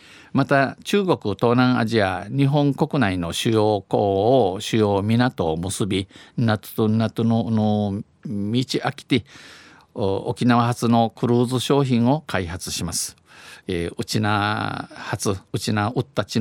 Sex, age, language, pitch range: male, 50-69, Japanese, 100-135 Hz